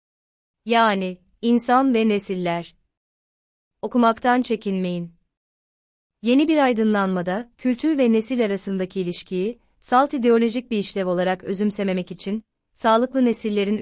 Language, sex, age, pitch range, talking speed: Turkish, female, 30-49, 180-220 Hz, 100 wpm